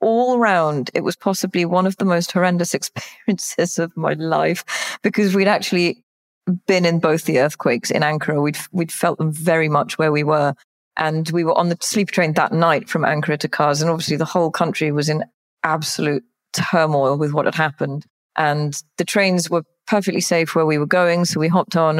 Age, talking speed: 30-49, 200 wpm